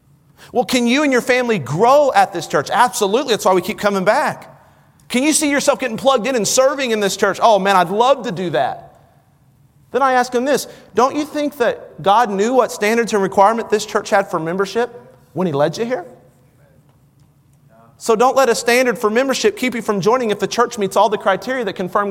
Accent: American